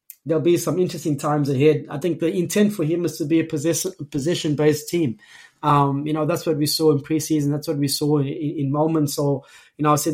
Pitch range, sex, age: 140-160 Hz, male, 20-39